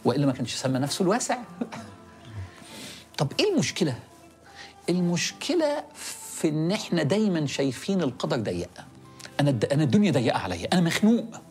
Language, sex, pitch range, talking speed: Arabic, male, 125-210 Hz, 130 wpm